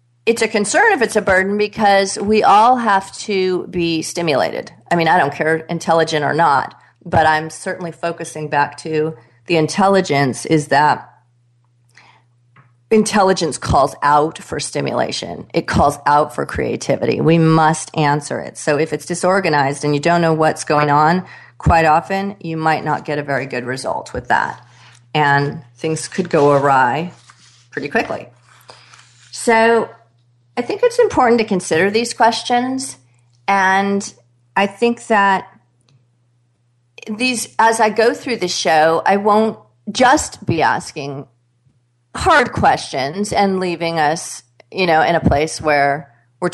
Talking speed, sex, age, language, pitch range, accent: 145 wpm, female, 40-59, English, 140-195 Hz, American